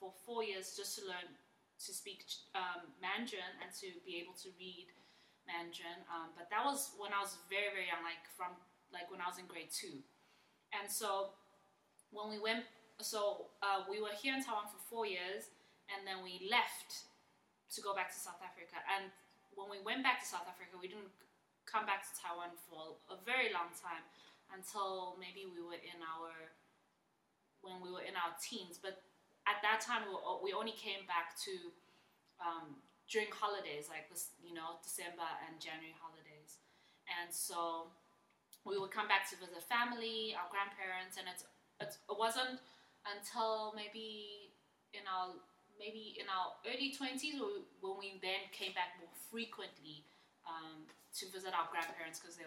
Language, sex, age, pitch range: English, female, 20-39, 175-210 Hz